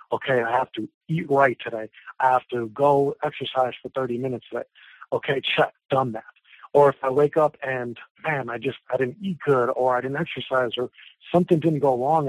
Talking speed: 205 wpm